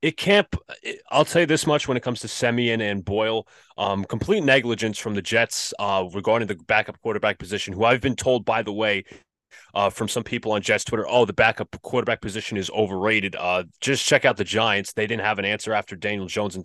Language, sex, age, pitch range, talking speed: English, male, 30-49, 110-145 Hz, 225 wpm